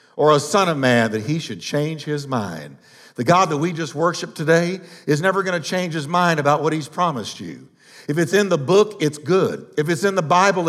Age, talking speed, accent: 50-69, 230 wpm, American